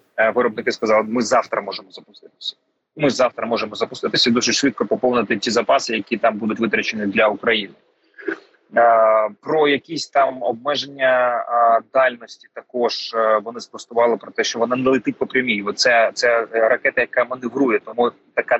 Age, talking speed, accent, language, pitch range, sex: 30-49, 140 wpm, native, Ukrainian, 115-145 Hz, male